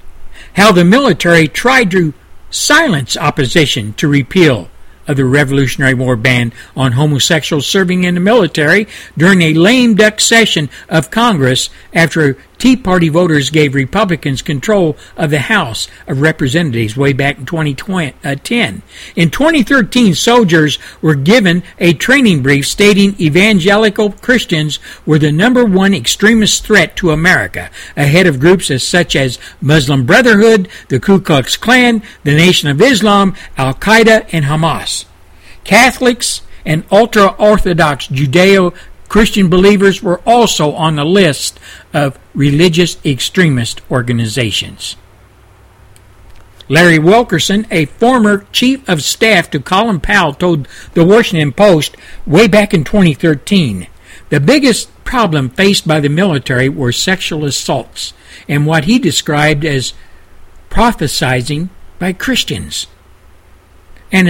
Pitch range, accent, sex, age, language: 130-200 Hz, American, male, 60-79, Japanese